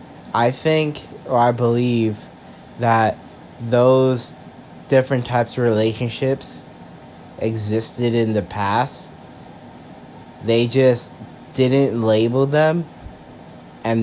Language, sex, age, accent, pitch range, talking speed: English, male, 30-49, American, 105-125 Hz, 90 wpm